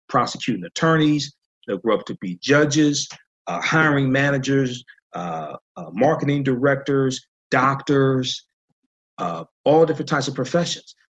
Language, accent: English, American